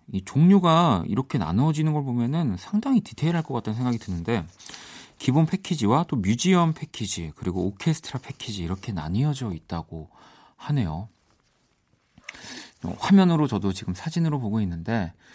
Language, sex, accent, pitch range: Korean, male, native, 95-130 Hz